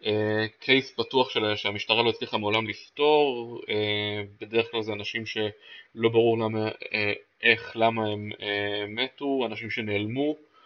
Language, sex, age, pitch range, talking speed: Hebrew, male, 20-39, 105-125 Hz, 120 wpm